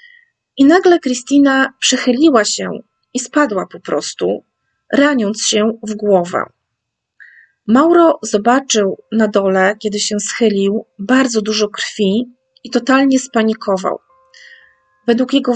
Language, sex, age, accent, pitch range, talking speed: Polish, female, 30-49, native, 200-260 Hz, 110 wpm